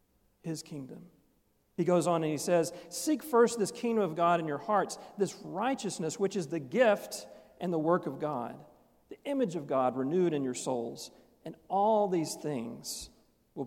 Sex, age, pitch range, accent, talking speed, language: male, 40-59, 145-195 Hz, American, 180 wpm, English